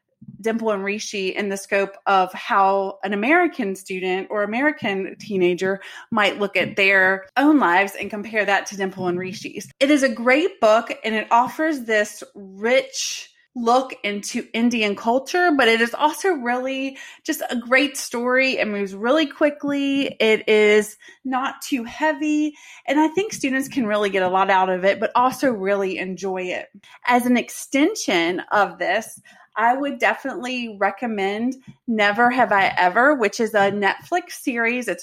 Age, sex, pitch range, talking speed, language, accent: 30-49, female, 200-270 Hz, 165 wpm, English, American